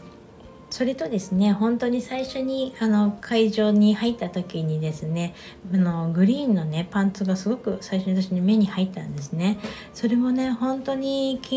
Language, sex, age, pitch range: Japanese, female, 60-79, 180-230 Hz